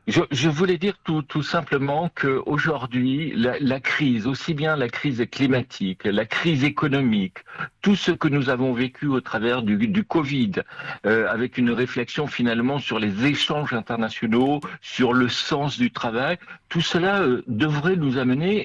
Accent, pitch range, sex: French, 125-155 Hz, male